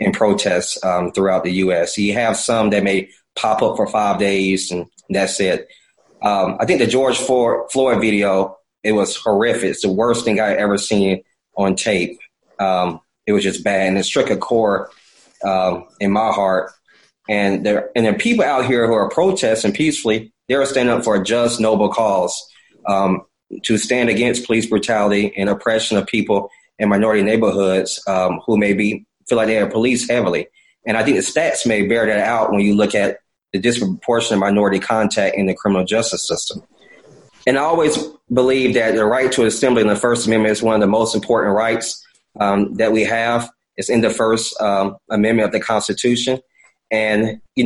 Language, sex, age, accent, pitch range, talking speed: English, male, 30-49, American, 100-115 Hz, 190 wpm